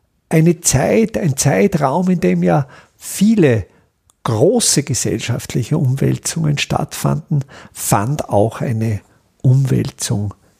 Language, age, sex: German, 50-69, male